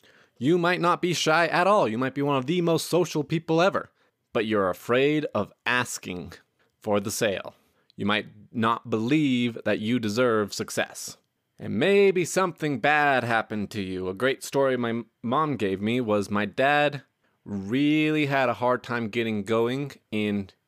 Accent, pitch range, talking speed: American, 105-135 Hz, 170 wpm